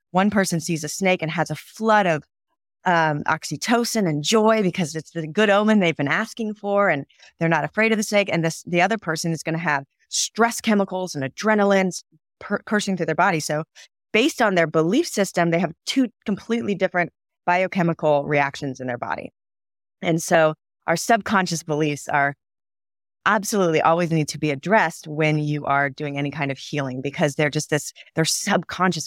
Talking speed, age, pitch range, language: 180 wpm, 30-49, 150-190 Hz, English